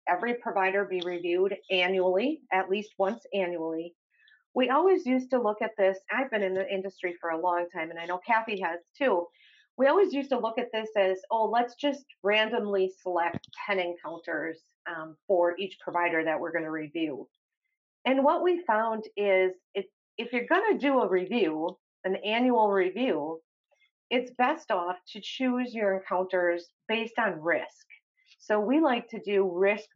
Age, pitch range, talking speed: 40-59, 180-240 Hz, 175 wpm